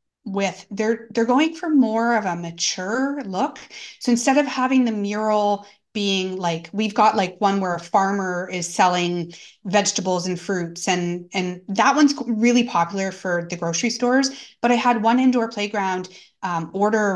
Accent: American